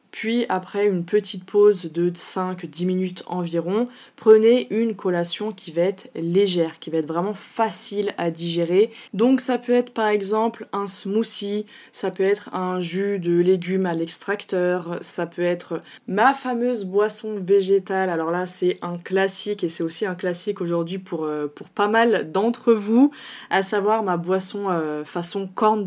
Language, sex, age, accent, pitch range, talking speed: French, female, 20-39, French, 170-205 Hz, 165 wpm